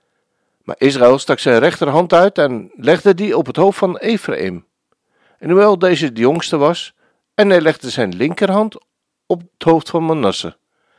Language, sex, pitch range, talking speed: Dutch, male, 130-195 Hz, 165 wpm